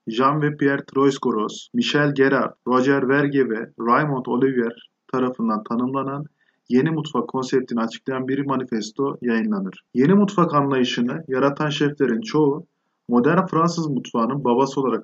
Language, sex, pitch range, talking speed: Turkish, male, 125-155 Hz, 115 wpm